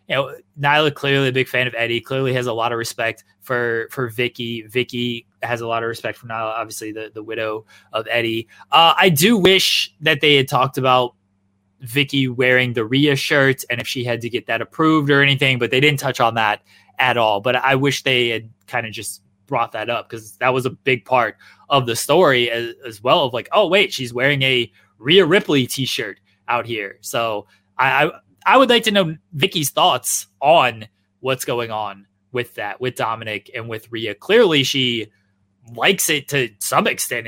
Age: 20-39